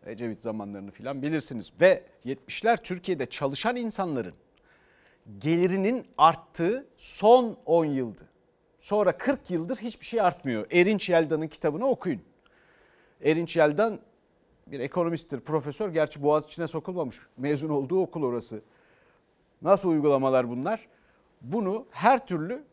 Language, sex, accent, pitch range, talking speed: Turkish, male, native, 140-230 Hz, 110 wpm